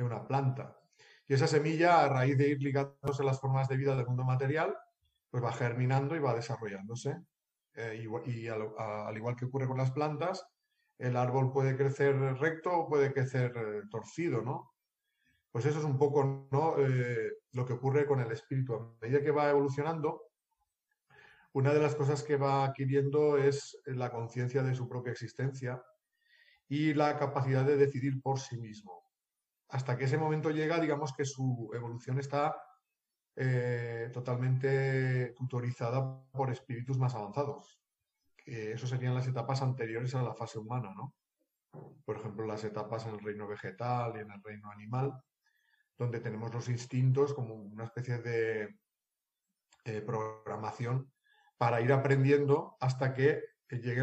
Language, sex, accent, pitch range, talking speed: Spanish, male, Spanish, 120-145 Hz, 160 wpm